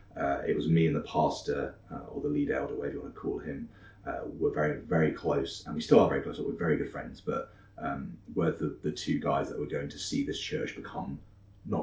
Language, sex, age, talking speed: English, male, 30-49, 255 wpm